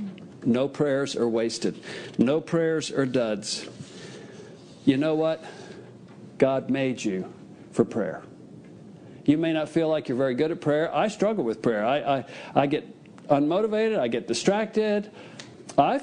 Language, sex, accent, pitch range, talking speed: English, male, American, 130-170 Hz, 145 wpm